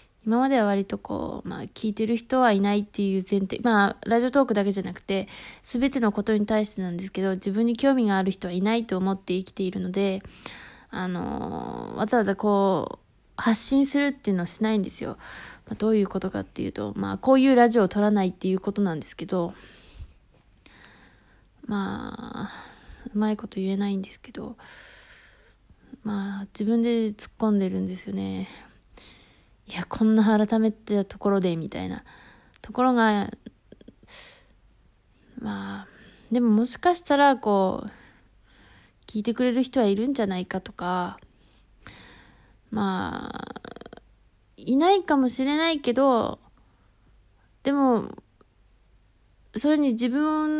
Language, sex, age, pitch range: Japanese, female, 20-39, 195-255 Hz